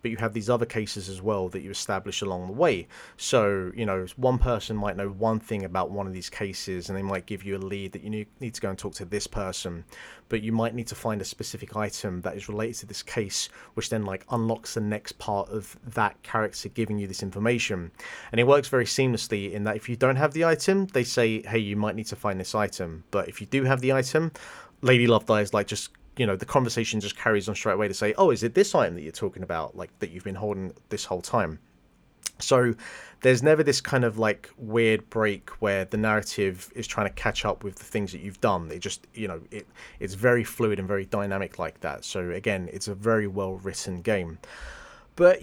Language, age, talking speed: English, 30-49, 240 wpm